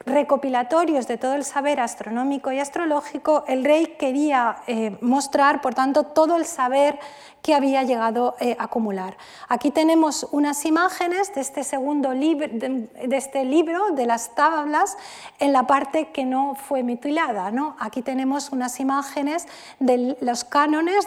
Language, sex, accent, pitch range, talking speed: Spanish, female, Spanish, 240-290 Hz, 150 wpm